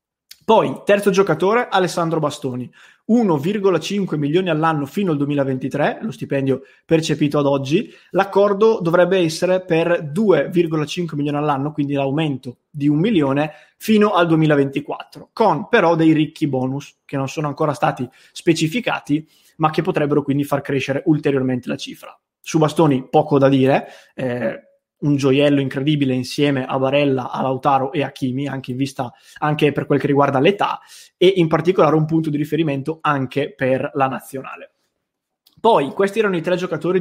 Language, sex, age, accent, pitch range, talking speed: English, male, 20-39, Italian, 140-170 Hz, 150 wpm